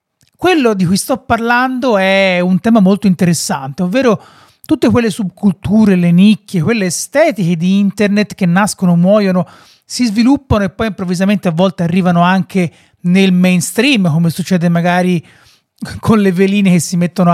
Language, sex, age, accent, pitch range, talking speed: Italian, male, 30-49, native, 175-210 Hz, 150 wpm